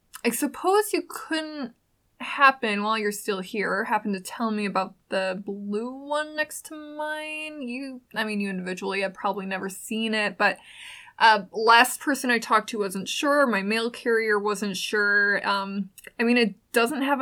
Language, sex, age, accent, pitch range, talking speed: English, female, 20-39, American, 200-255 Hz, 175 wpm